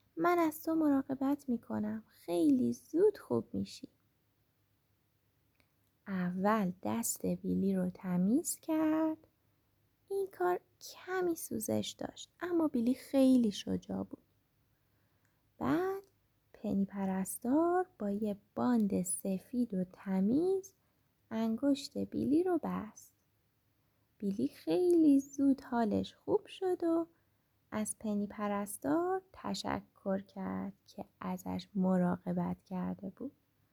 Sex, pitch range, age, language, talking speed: female, 175-290 Hz, 20-39, Persian, 95 wpm